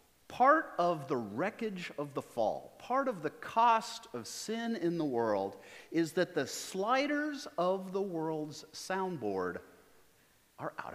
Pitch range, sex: 140-220 Hz, male